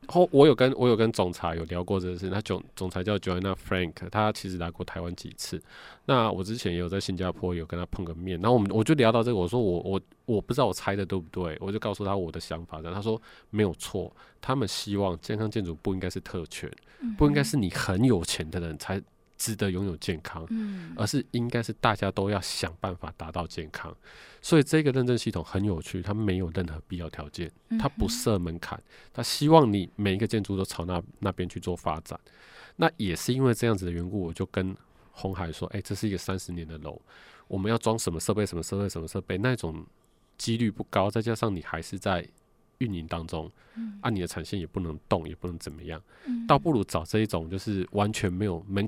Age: 20-39